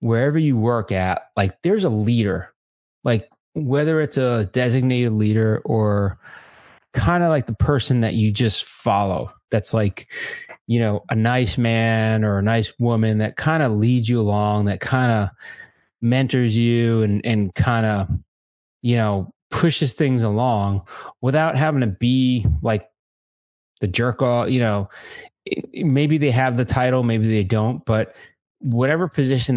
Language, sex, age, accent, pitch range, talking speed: English, male, 30-49, American, 105-125 Hz, 155 wpm